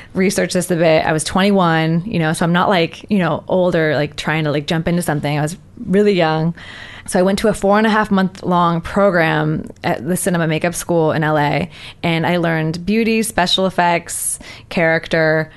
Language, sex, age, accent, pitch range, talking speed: English, female, 20-39, American, 155-195 Hz, 205 wpm